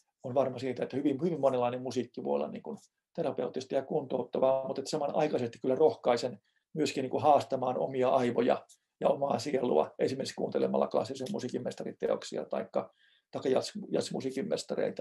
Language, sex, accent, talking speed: Finnish, male, native, 135 wpm